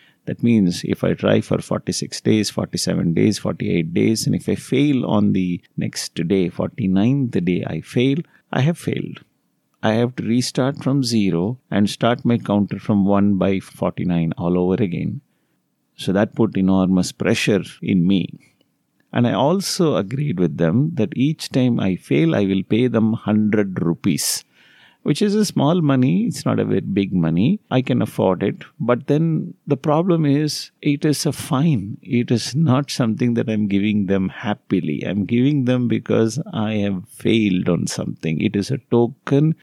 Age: 30-49